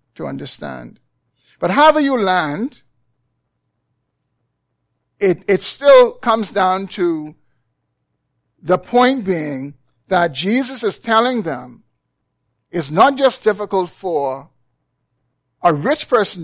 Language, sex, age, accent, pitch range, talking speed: English, male, 50-69, American, 155-205 Hz, 100 wpm